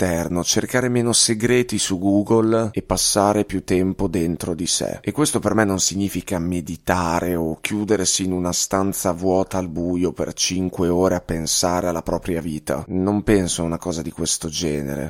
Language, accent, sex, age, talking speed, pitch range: Italian, native, male, 30-49, 170 wpm, 90-110 Hz